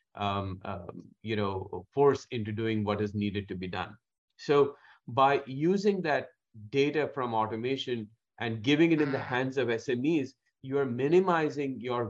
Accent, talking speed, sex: Indian, 160 wpm, male